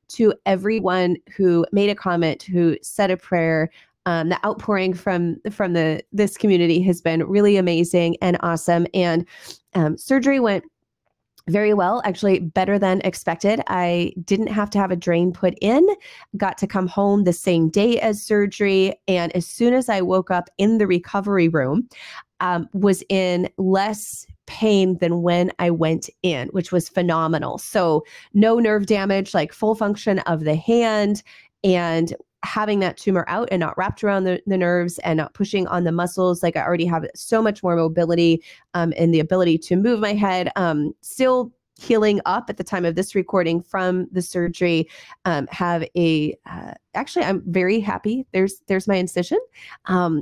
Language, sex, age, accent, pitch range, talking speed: English, female, 30-49, American, 170-205 Hz, 175 wpm